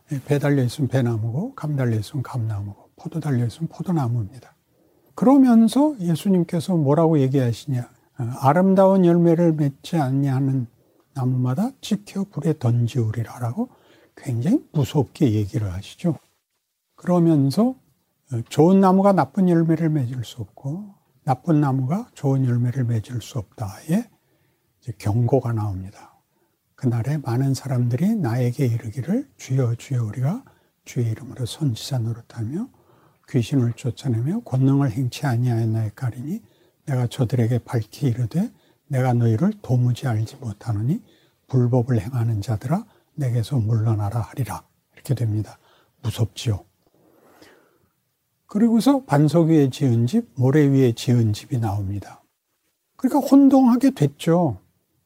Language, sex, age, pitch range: Korean, male, 60-79, 120-165 Hz